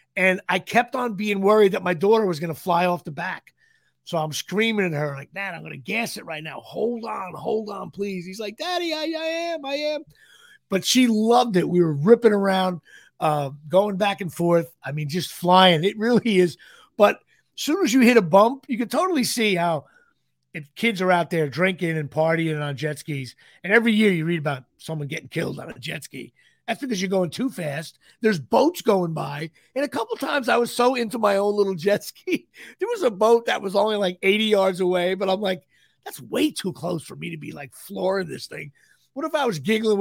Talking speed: 230 wpm